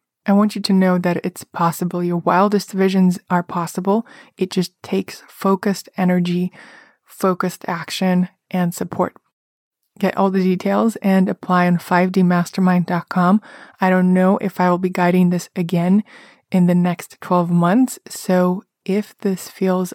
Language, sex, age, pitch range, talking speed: English, female, 20-39, 180-195 Hz, 145 wpm